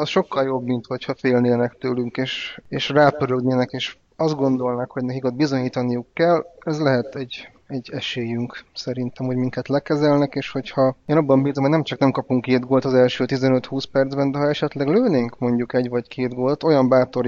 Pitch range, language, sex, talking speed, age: 120-140 Hz, Hungarian, male, 190 wpm, 20-39